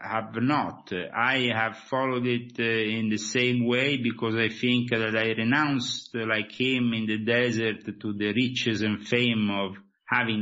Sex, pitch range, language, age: male, 105-125 Hz, English, 50-69